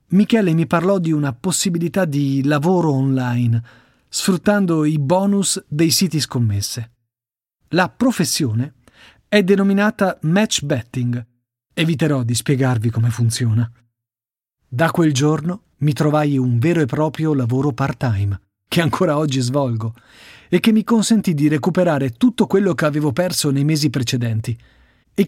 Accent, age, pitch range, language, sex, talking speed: native, 40-59, 125-170 Hz, Italian, male, 135 wpm